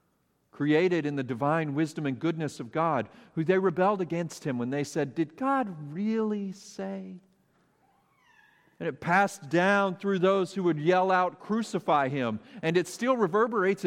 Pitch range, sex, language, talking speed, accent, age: 155-195 Hz, male, English, 160 wpm, American, 50-69